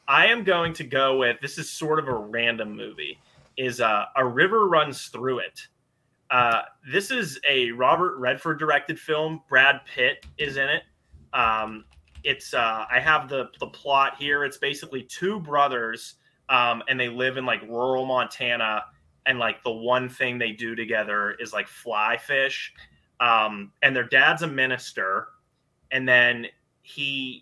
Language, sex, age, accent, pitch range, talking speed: English, male, 20-39, American, 115-145 Hz, 160 wpm